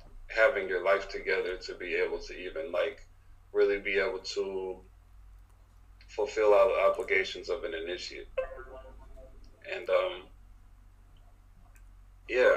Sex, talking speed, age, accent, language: male, 115 wpm, 30-49, American, English